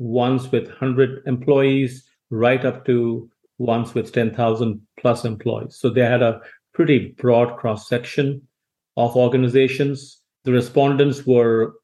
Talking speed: 120 wpm